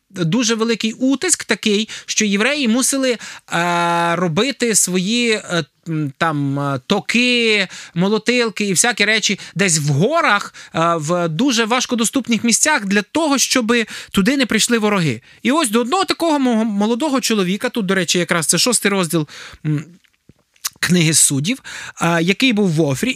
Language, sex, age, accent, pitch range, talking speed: Ukrainian, male, 20-39, native, 170-230 Hz, 125 wpm